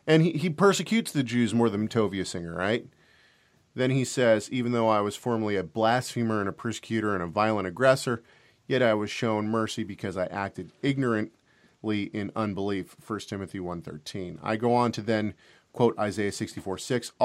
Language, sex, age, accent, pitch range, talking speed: English, male, 40-59, American, 100-120 Hz, 175 wpm